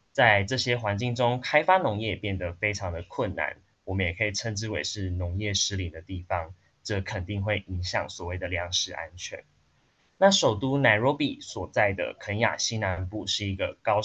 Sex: male